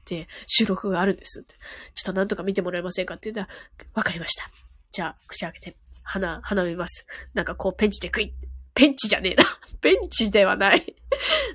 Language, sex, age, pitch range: Japanese, female, 20-39, 190-300 Hz